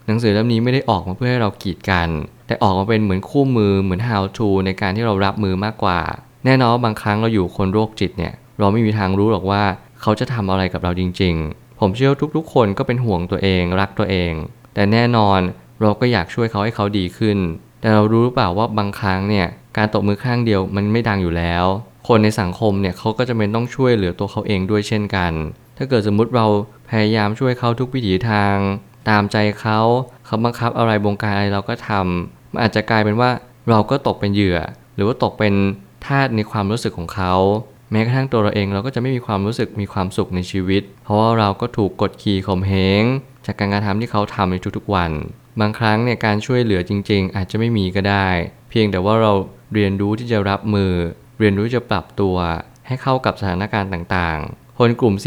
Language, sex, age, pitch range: Thai, male, 20-39, 95-115 Hz